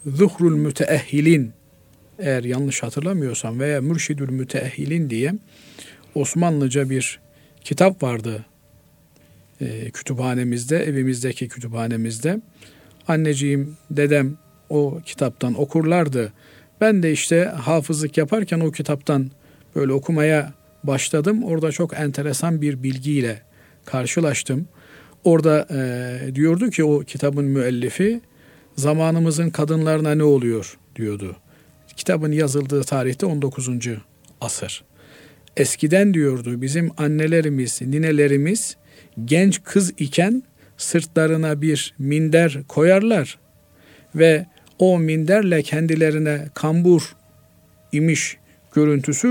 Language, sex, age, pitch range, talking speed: Turkish, male, 50-69, 135-165 Hz, 90 wpm